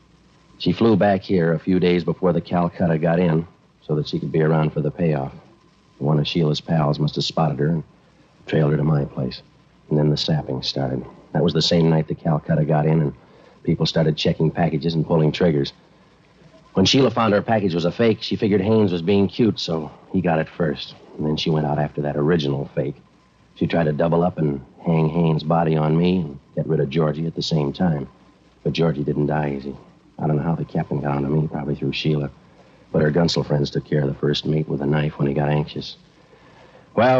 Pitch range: 75-90 Hz